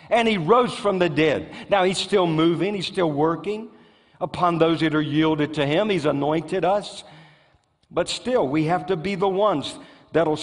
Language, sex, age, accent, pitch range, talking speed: English, male, 50-69, American, 155-210 Hz, 190 wpm